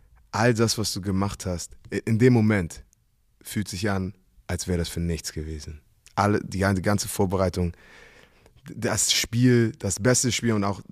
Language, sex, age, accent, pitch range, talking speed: German, male, 20-39, German, 95-125 Hz, 160 wpm